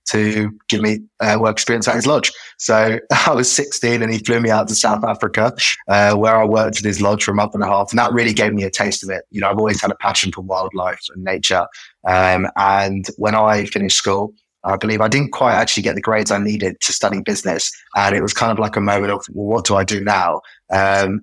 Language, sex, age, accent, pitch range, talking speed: English, male, 20-39, British, 100-110 Hz, 255 wpm